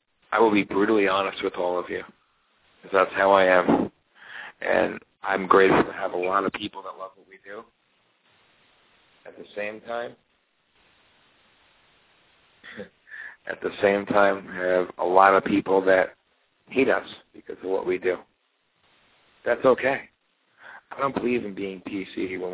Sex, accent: male, American